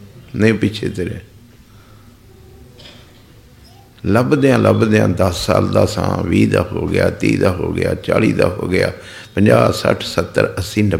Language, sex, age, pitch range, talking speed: Punjabi, male, 50-69, 100-120 Hz, 125 wpm